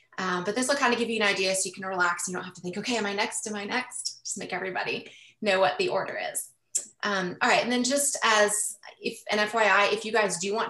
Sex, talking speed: female, 270 wpm